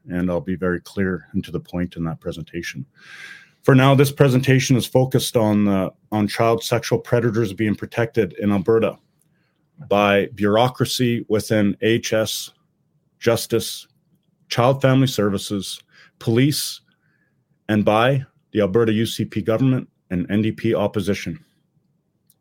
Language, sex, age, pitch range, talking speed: English, male, 40-59, 100-140 Hz, 125 wpm